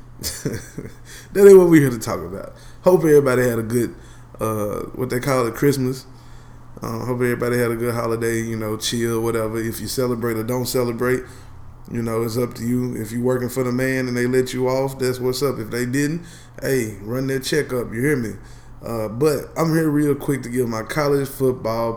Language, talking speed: English, 215 wpm